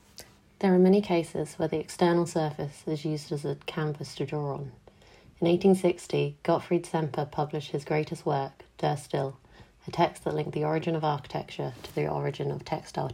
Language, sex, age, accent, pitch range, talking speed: English, female, 30-49, British, 145-165 Hz, 180 wpm